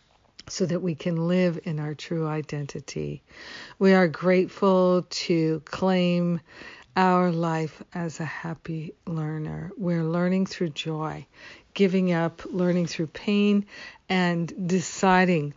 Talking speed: 120 wpm